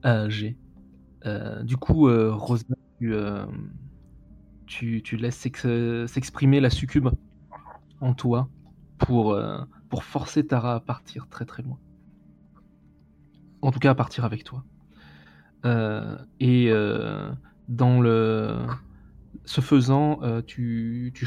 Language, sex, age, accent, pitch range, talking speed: French, male, 20-39, French, 90-125 Hz, 130 wpm